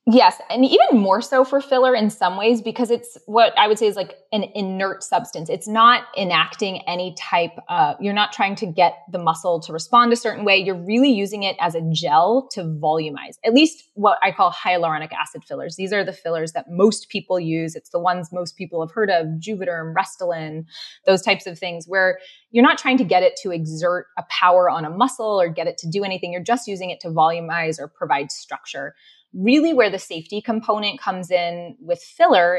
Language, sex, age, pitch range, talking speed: English, female, 20-39, 170-225 Hz, 215 wpm